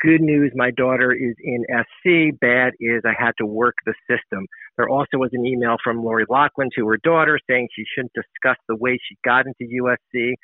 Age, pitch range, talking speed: 50-69, 120-145 Hz, 205 wpm